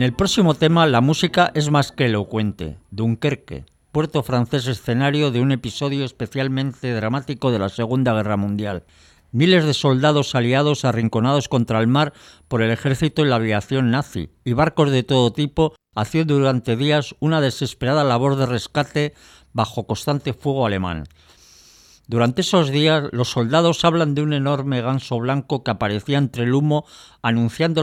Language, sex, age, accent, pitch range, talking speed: Spanish, male, 50-69, Spanish, 115-150 Hz, 155 wpm